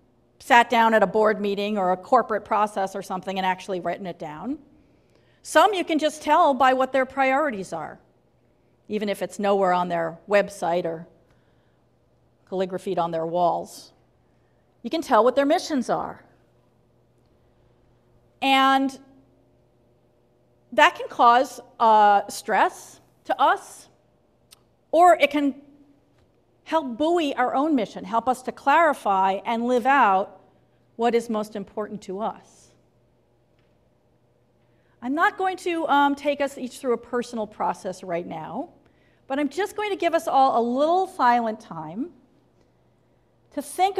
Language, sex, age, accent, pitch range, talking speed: English, female, 40-59, American, 195-285 Hz, 140 wpm